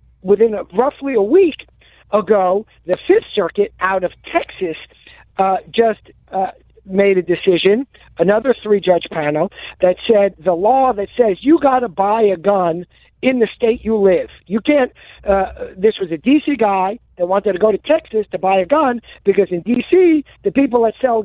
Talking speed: 180 wpm